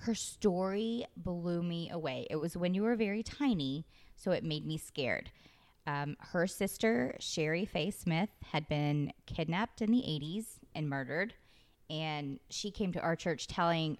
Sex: female